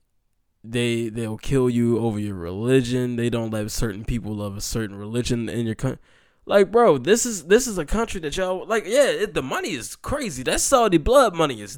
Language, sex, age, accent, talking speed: English, male, 10-29, American, 210 wpm